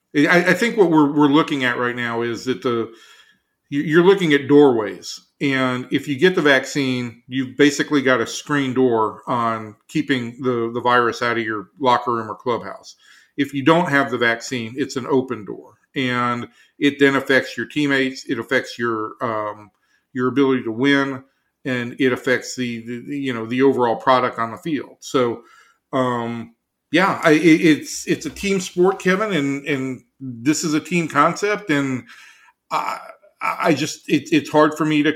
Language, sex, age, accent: English, male, 40-59, American